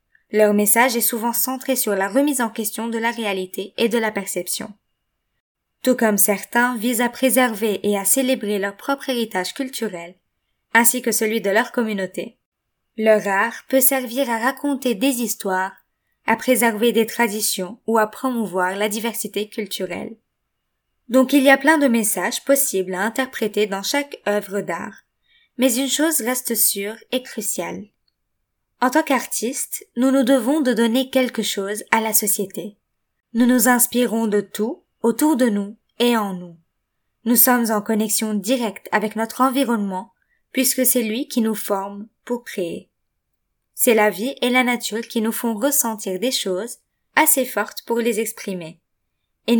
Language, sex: French, female